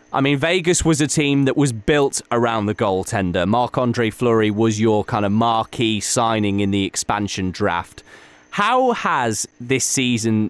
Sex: male